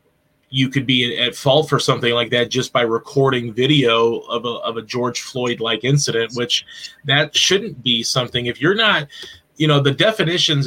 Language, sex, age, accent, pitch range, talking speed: English, male, 30-49, American, 120-140 Hz, 180 wpm